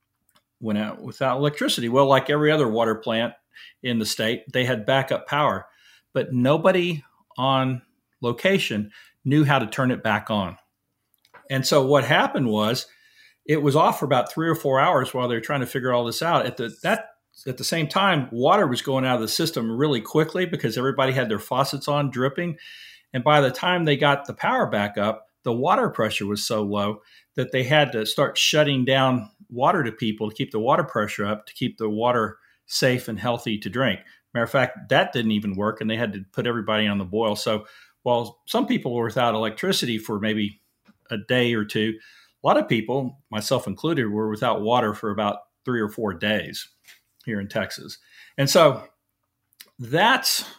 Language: English